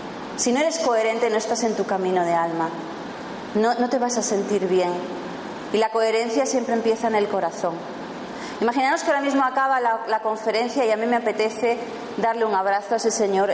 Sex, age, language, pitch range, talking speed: female, 30-49, Spanish, 195-245 Hz, 200 wpm